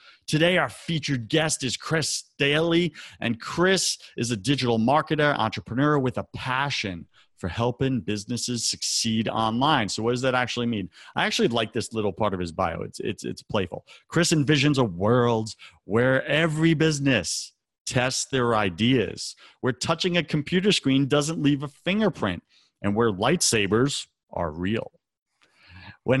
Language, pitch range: English, 110-145 Hz